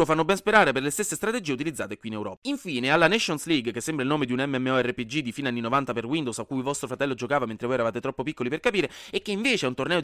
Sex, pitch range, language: male, 125-200 Hz, Italian